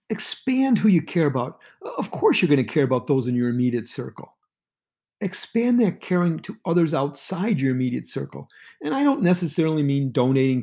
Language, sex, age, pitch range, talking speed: English, male, 50-69, 140-205 Hz, 180 wpm